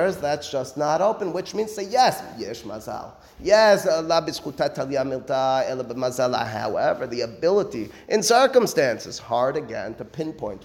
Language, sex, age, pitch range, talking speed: English, male, 30-49, 130-170 Hz, 105 wpm